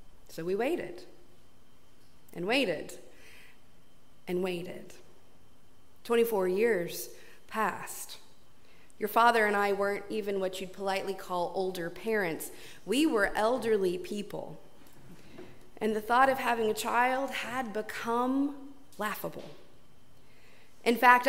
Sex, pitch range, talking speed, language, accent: female, 185-230 Hz, 105 wpm, English, American